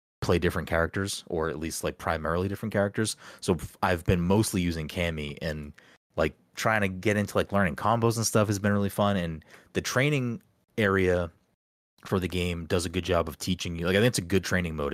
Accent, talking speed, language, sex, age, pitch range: American, 215 wpm, English, male, 30-49, 80-95 Hz